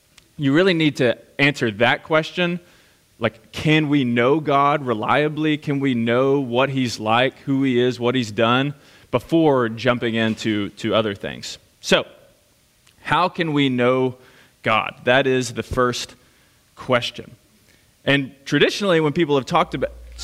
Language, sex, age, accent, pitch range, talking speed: English, male, 20-39, American, 115-150 Hz, 145 wpm